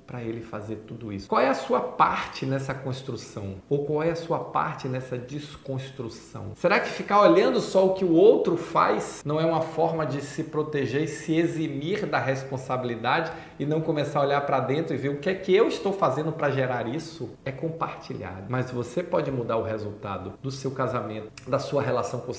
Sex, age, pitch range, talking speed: male, 40-59, 125-185 Hz, 205 wpm